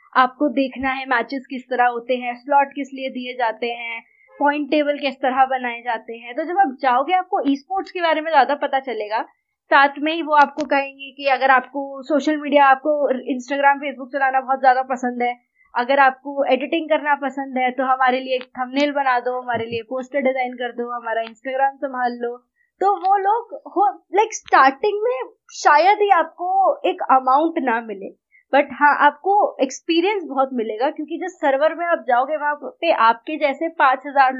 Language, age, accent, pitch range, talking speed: Hindi, 20-39, native, 250-315 Hz, 180 wpm